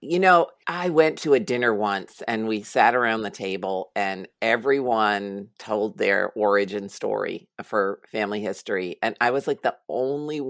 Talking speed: 165 wpm